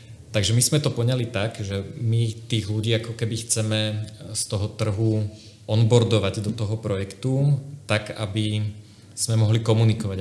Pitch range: 100-115 Hz